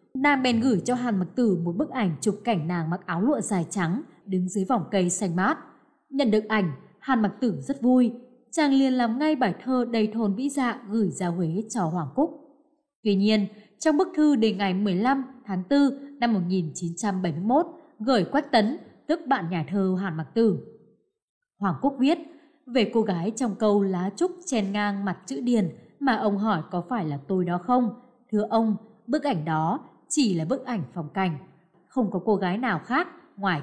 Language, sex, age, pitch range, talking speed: Vietnamese, female, 20-39, 185-265 Hz, 210 wpm